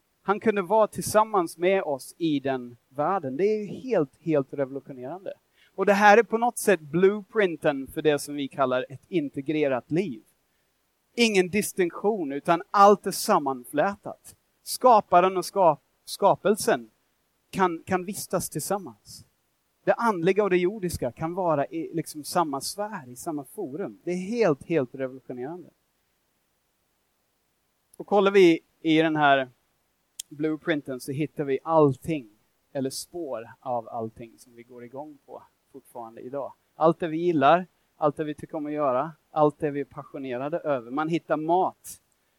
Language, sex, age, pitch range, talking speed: Swedish, male, 30-49, 145-190 Hz, 150 wpm